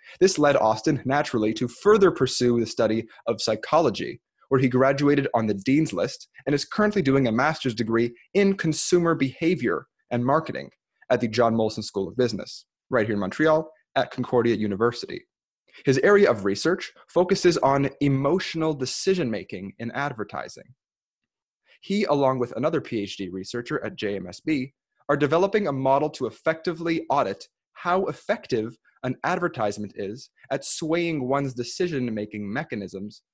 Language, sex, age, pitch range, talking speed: English, male, 20-39, 115-155 Hz, 140 wpm